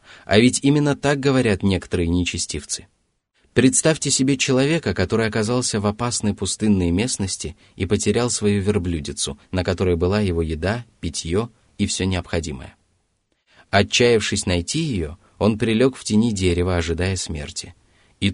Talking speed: 130 wpm